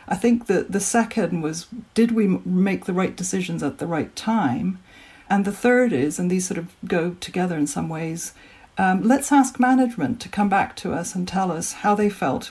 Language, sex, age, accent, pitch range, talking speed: English, female, 60-79, British, 165-210 Hz, 210 wpm